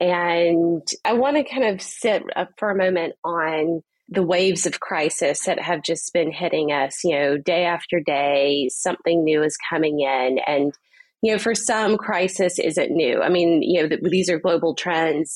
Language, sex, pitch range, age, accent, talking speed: English, female, 165-210 Hz, 30-49, American, 190 wpm